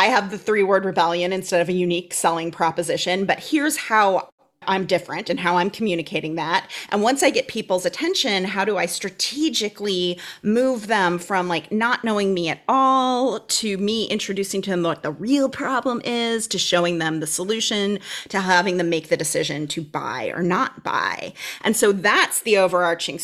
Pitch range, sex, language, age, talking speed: 180-250 Hz, female, English, 30-49, 185 wpm